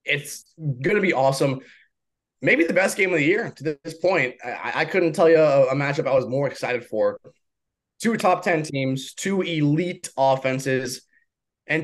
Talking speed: 180 wpm